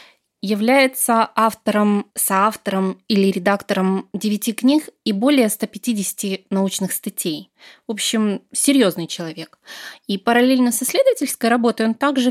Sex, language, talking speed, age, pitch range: female, Russian, 110 wpm, 20-39, 195-250 Hz